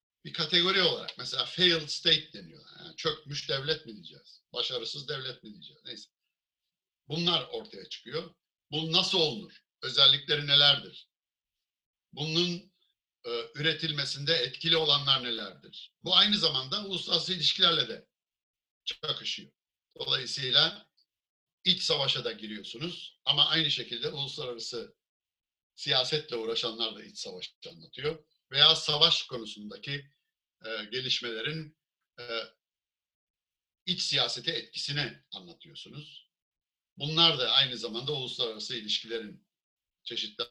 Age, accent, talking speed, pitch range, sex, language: 60-79, native, 105 wpm, 125-165 Hz, male, Turkish